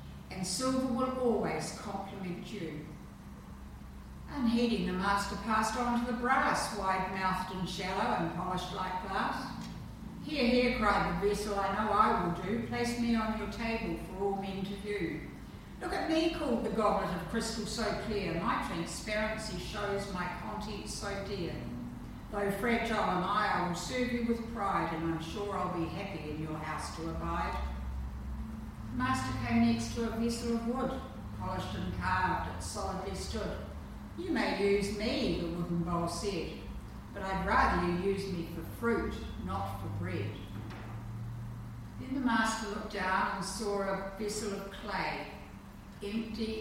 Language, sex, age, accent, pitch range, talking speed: English, female, 60-79, Australian, 170-215 Hz, 160 wpm